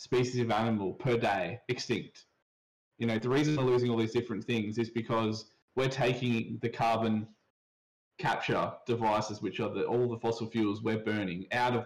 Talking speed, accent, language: 175 wpm, Australian, English